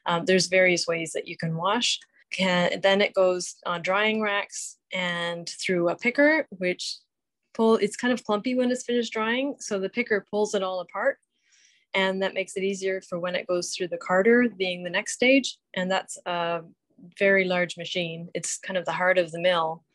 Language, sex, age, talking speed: English, female, 20-39, 200 wpm